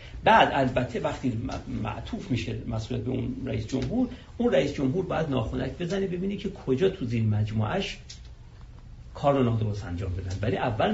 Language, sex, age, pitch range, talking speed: Persian, male, 50-69, 105-135 Hz, 160 wpm